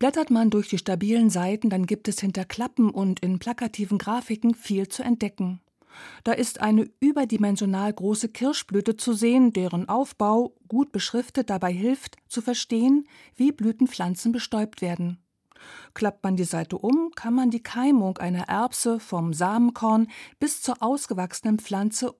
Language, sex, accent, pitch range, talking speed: German, female, German, 195-250 Hz, 150 wpm